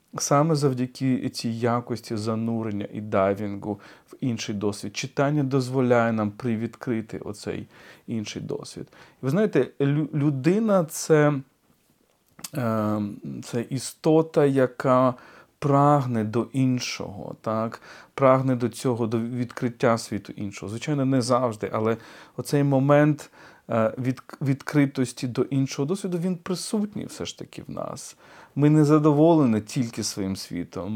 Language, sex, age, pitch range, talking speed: Ukrainian, male, 40-59, 110-140 Hz, 115 wpm